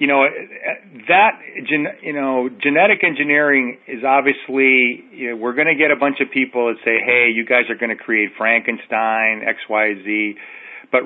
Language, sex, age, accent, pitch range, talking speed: English, male, 40-59, American, 115-140 Hz, 170 wpm